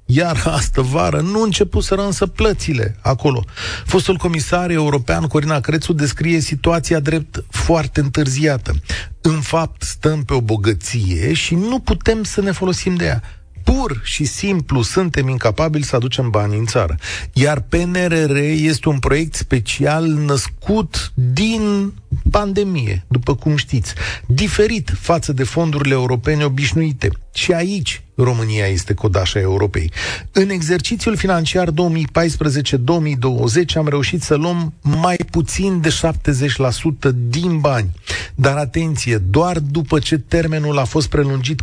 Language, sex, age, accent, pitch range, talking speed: Romanian, male, 40-59, native, 115-165 Hz, 130 wpm